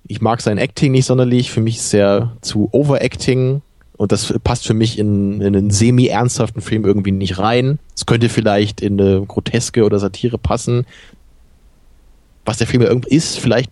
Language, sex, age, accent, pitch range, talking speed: German, male, 20-39, German, 105-125 Hz, 180 wpm